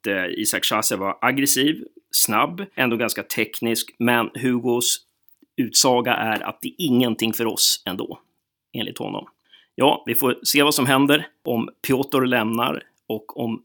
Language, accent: Swedish, native